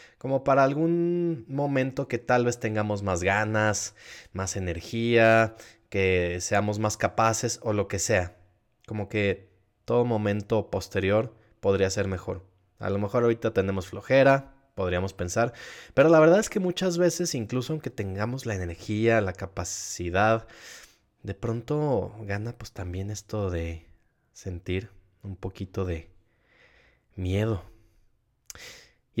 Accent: Mexican